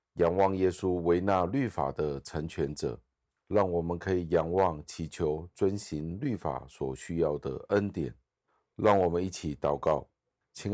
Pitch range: 75-95 Hz